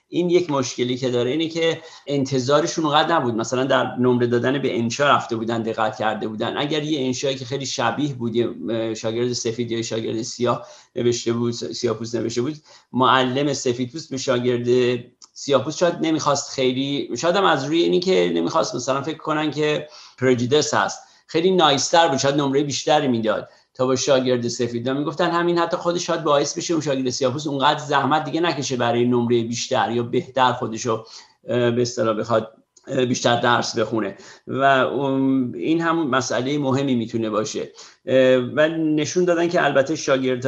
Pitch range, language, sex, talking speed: 120-145 Hz, Persian, male, 160 wpm